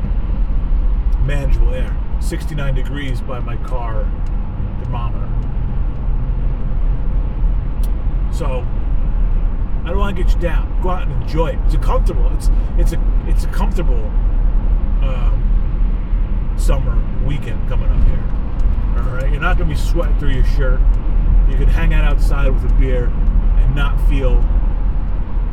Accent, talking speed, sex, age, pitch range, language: American, 135 wpm, male, 30-49, 70-110 Hz, English